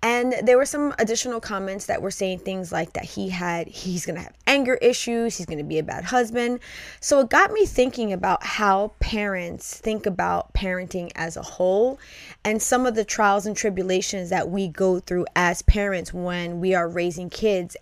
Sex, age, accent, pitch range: female, 20-39, American, 180-215 Hz